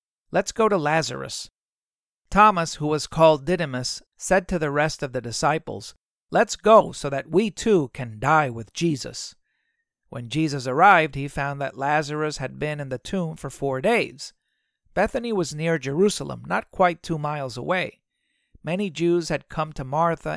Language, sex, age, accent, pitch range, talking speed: English, male, 40-59, American, 135-175 Hz, 165 wpm